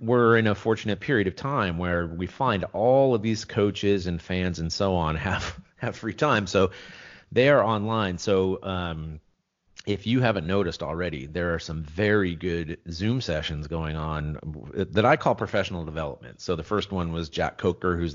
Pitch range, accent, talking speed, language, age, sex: 80-105 Hz, American, 185 wpm, English, 40-59, male